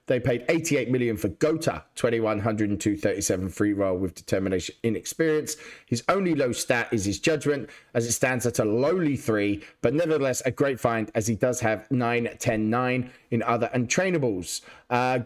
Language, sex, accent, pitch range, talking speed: English, male, British, 110-145 Hz, 165 wpm